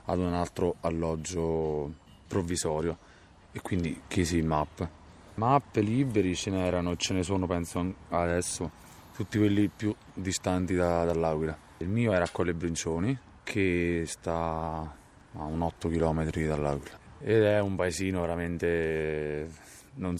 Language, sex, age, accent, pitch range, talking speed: Italian, male, 20-39, native, 80-95 Hz, 130 wpm